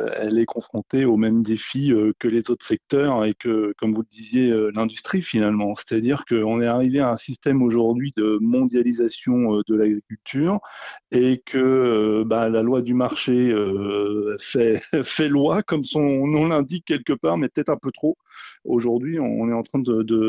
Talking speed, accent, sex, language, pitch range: 175 wpm, French, male, French, 110-130 Hz